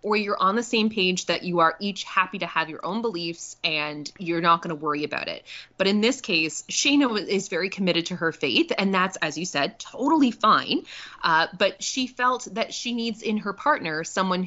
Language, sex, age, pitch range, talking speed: English, female, 20-39, 155-215 Hz, 220 wpm